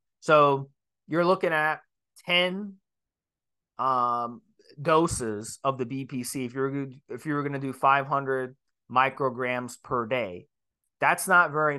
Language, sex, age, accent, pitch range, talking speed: English, male, 30-49, American, 135-170 Hz, 125 wpm